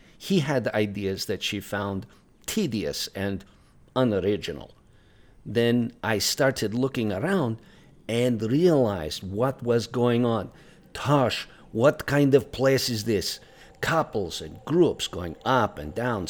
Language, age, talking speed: English, 50-69, 125 wpm